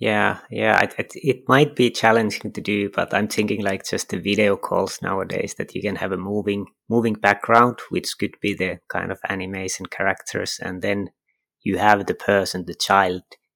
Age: 30-49